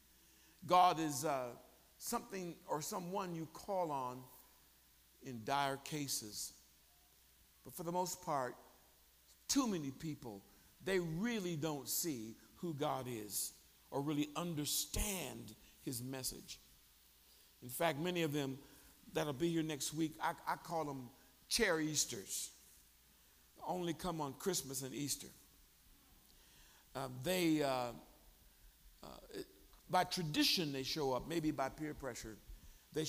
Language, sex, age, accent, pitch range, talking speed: English, male, 50-69, American, 110-165 Hz, 125 wpm